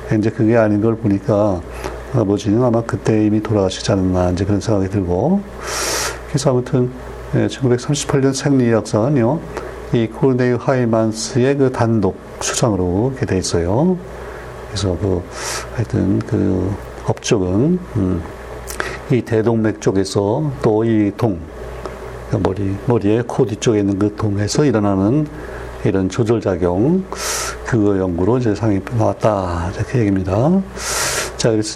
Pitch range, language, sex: 105-130 Hz, Korean, male